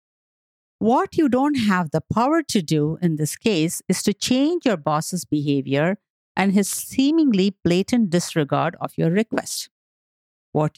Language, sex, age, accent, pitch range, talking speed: English, female, 50-69, Indian, 165-240 Hz, 145 wpm